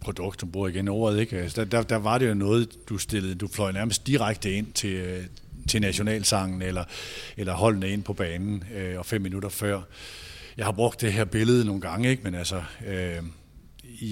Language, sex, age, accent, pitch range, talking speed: Danish, male, 50-69, native, 100-125 Hz, 195 wpm